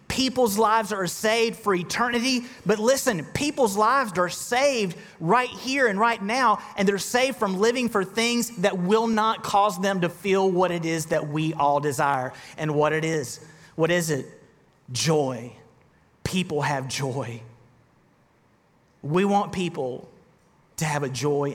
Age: 30-49